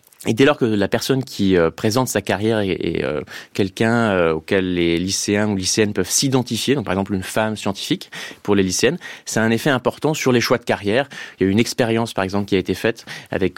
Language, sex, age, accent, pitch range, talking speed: French, male, 20-39, French, 100-120 Hz, 245 wpm